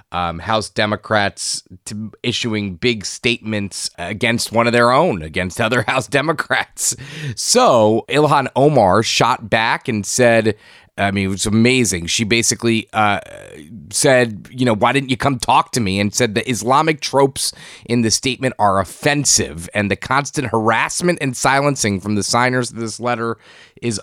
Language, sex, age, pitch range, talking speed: English, male, 20-39, 100-120 Hz, 155 wpm